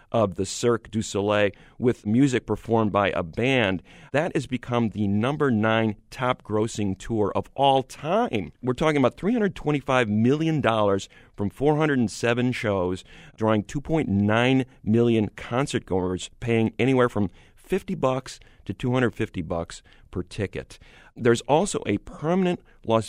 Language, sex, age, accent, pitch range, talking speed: English, male, 40-59, American, 105-130 Hz, 125 wpm